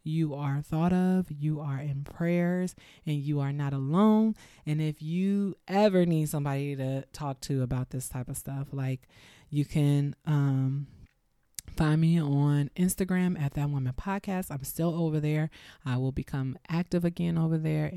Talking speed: 165 wpm